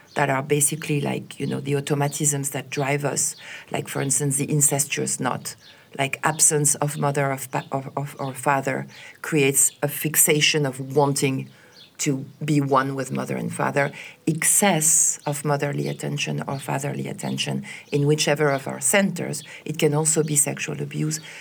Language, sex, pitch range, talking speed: English, female, 145-190 Hz, 155 wpm